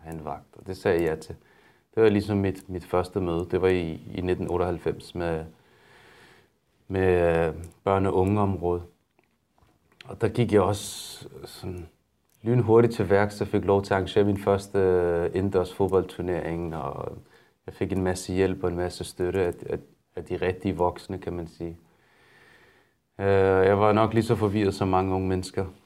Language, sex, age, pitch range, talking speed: Danish, male, 30-49, 90-100 Hz, 170 wpm